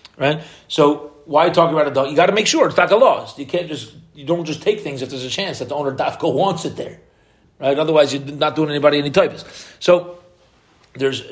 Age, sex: 40-59, male